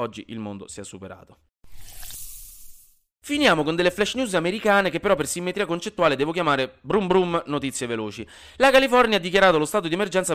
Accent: native